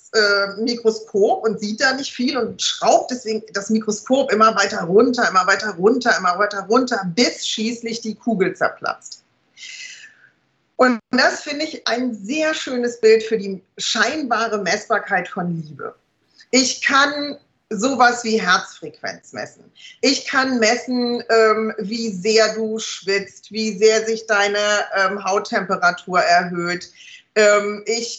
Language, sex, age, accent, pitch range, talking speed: German, female, 40-59, German, 205-250 Hz, 125 wpm